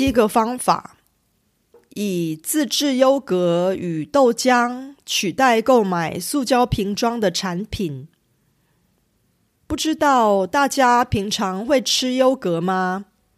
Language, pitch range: Korean, 190-260 Hz